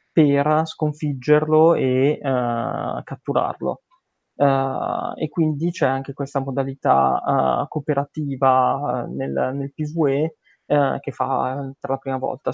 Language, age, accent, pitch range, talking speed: Italian, 20-39, native, 130-145 Hz, 115 wpm